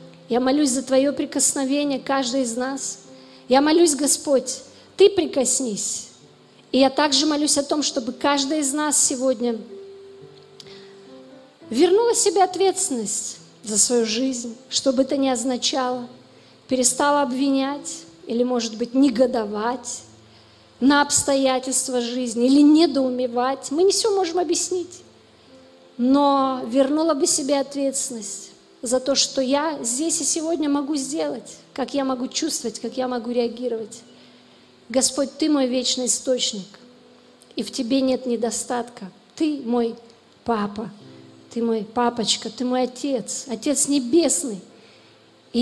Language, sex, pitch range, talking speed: Russian, female, 240-285 Hz, 125 wpm